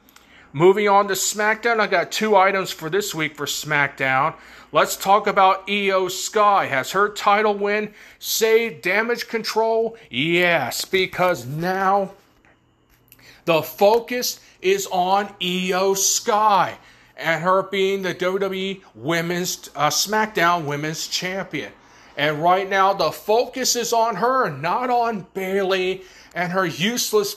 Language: English